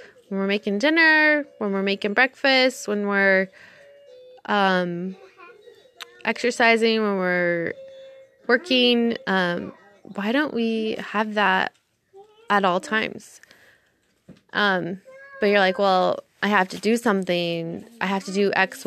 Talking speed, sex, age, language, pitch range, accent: 125 wpm, female, 20-39, English, 190-265 Hz, American